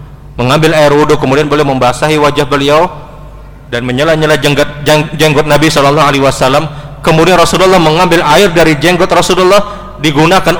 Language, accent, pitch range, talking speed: Indonesian, native, 140-170 Hz, 125 wpm